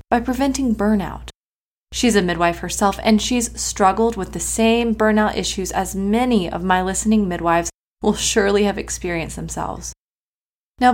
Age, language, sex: 20-39, English, female